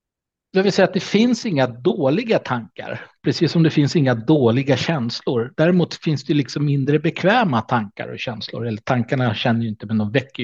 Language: Swedish